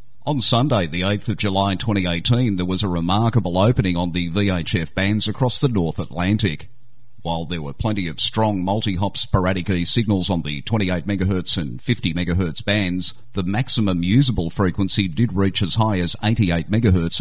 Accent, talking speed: Australian, 165 wpm